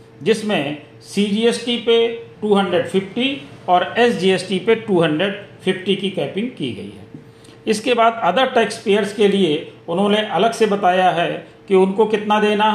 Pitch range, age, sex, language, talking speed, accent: 165-215 Hz, 40-59, male, Hindi, 135 wpm, native